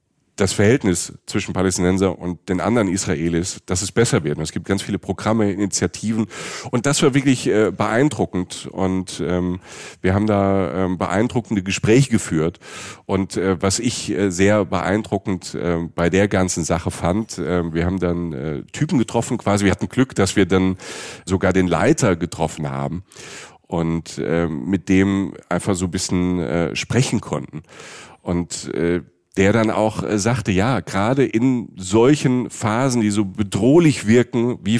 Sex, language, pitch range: male, German, 95-120 Hz